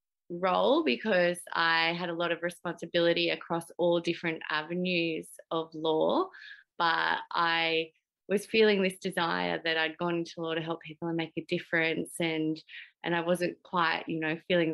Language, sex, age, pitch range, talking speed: English, female, 20-39, 165-210 Hz, 165 wpm